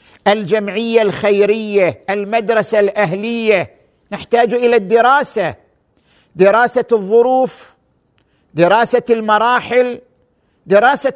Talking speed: 65 wpm